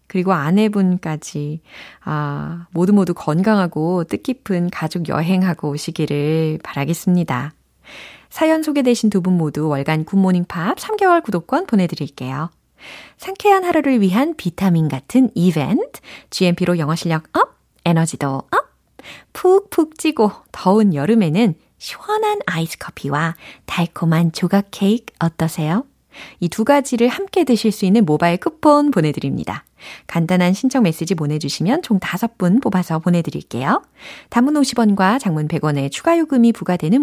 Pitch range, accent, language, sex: 165-260 Hz, native, Korean, female